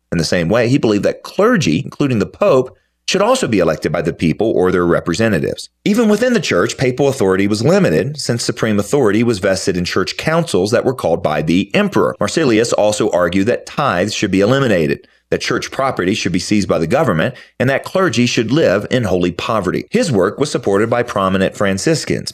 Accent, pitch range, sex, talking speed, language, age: American, 95-135 Hz, male, 200 wpm, English, 40-59